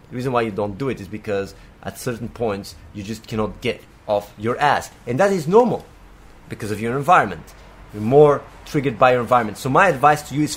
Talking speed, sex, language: 220 wpm, male, English